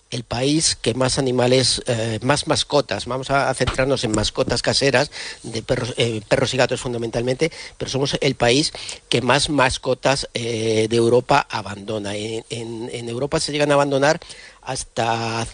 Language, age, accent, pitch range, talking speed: Spanish, 50-69, Spanish, 115-140 Hz, 160 wpm